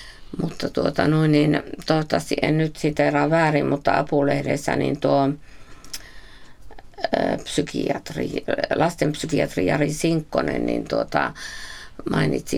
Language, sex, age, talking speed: Finnish, female, 50-69, 95 wpm